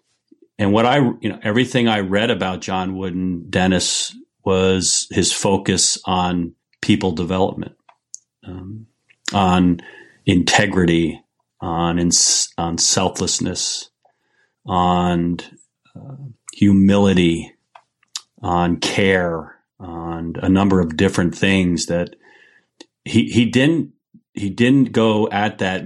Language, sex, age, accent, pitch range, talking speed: English, male, 40-59, American, 90-110 Hz, 105 wpm